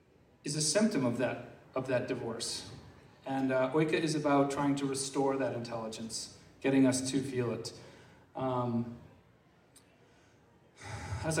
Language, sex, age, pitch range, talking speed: English, male, 40-59, 125-150 Hz, 130 wpm